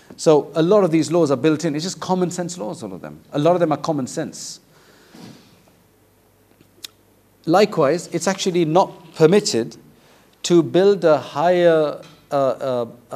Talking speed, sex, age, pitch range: 160 wpm, male, 50-69, 135-165 Hz